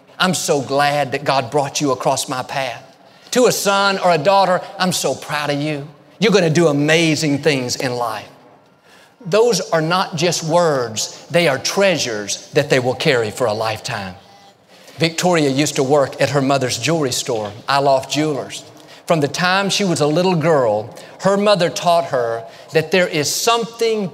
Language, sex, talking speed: English, male, 175 wpm